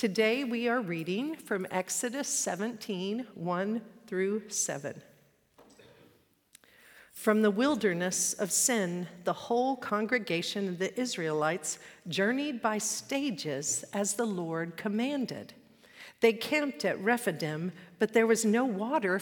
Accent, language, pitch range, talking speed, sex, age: American, English, 200-280 Hz, 115 wpm, female, 50-69